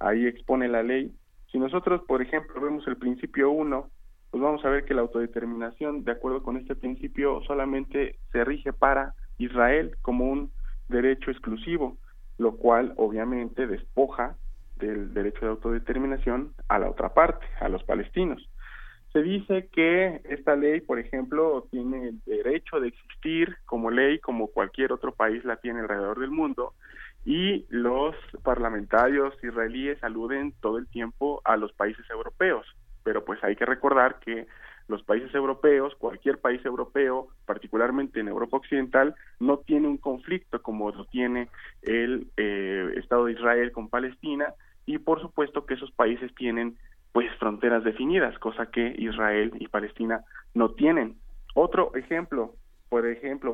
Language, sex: Spanish, male